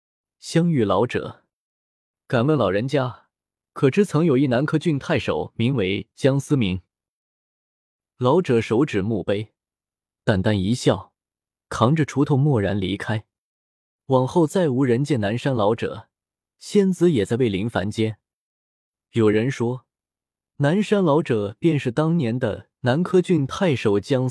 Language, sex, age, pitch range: Chinese, male, 20-39, 105-155 Hz